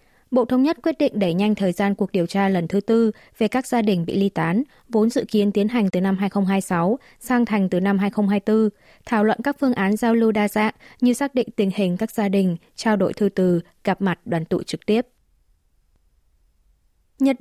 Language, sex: Vietnamese, female